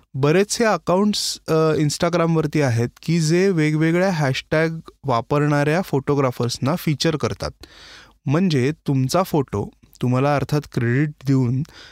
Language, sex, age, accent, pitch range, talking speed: Marathi, male, 20-39, native, 135-180 Hz, 100 wpm